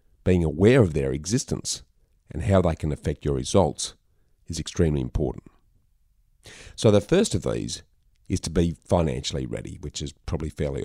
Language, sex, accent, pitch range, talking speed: English, male, Australian, 75-95 Hz, 160 wpm